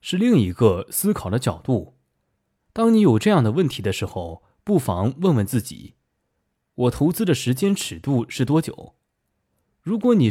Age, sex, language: 20-39, male, Chinese